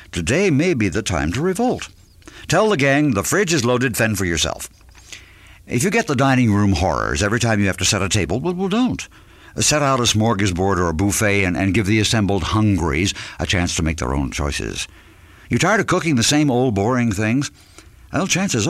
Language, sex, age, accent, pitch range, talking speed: English, male, 60-79, American, 90-135 Hz, 210 wpm